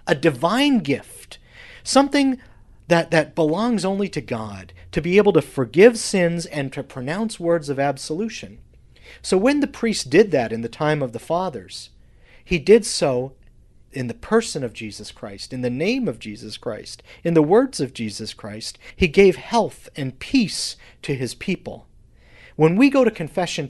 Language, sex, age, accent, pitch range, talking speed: English, male, 40-59, American, 120-200 Hz, 170 wpm